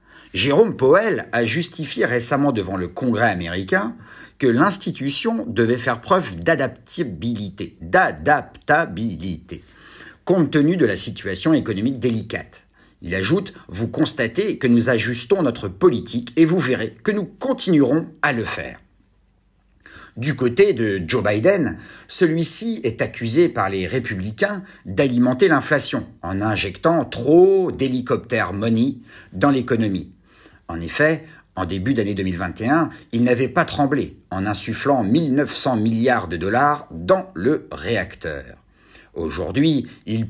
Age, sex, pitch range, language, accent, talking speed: 50-69, male, 100-145 Hz, French, French, 125 wpm